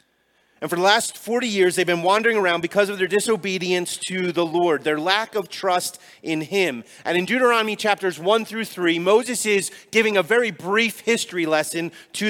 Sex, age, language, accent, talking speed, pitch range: male, 30-49, English, American, 190 wpm, 160-205 Hz